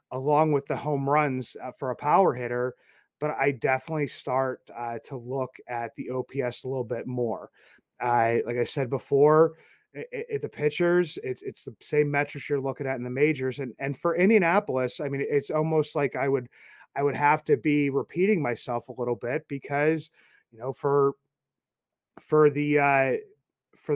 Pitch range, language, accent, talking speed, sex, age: 130-155 Hz, English, American, 180 wpm, male, 30-49